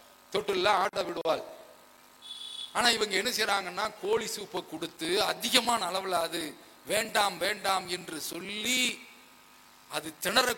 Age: 50-69